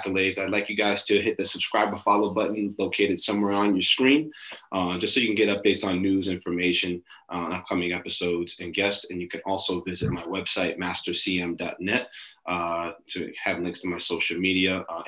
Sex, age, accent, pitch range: male, 20-39, American, 95-110 Hz